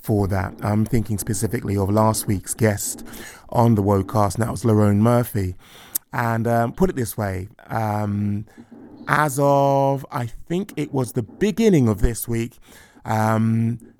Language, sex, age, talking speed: English, male, 20-39, 155 wpm